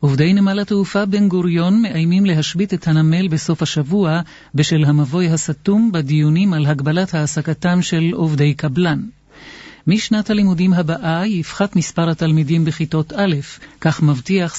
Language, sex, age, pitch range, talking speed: English, male, 50-69, 155-185 Hz, 130 wpm